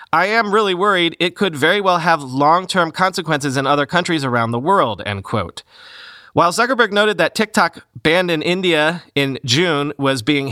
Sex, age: male, 30-49